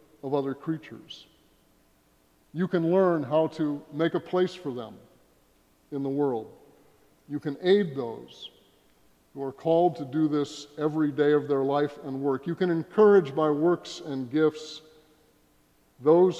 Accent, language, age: American, English, 50-69